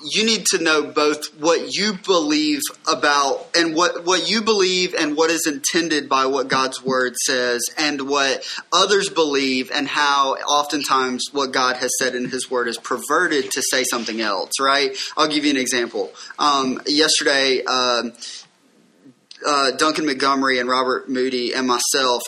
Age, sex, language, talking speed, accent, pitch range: 20-39, male, English, 160 wpm, American, 130-155 Hz